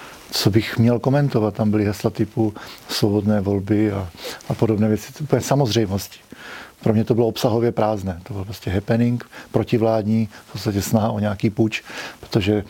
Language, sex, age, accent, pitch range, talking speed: Czech, male, 40-59, native, 105-120 Hz, 165 wpm